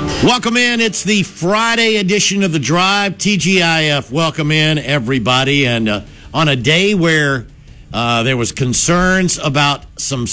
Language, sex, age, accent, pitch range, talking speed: English, male, 60-79, American, 130-185 Hz, 145 wpm